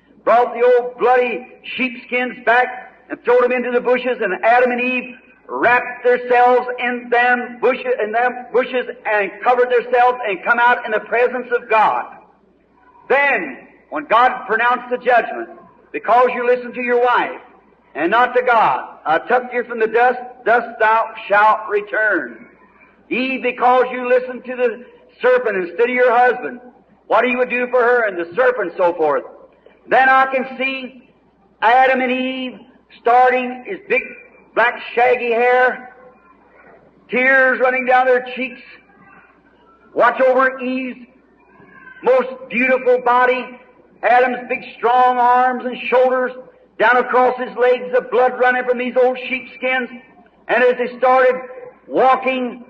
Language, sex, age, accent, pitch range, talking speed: English, male, 50-69, American, 245-255 Hz, 145 wpm